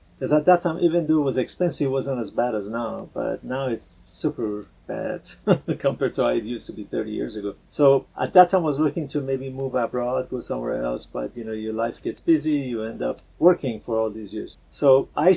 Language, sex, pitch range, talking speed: English, male, 120-145 Hz, 240 wpm